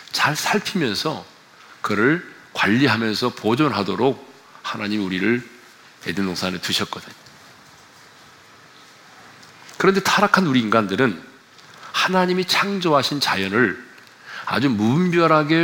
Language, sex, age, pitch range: Korean, male, 40-59, 115-160 Hz